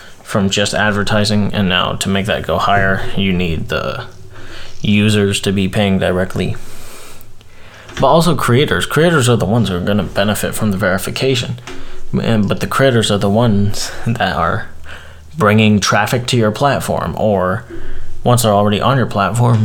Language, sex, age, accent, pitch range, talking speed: English, male, 20-39, American, 100-125 Hz, 160 wpm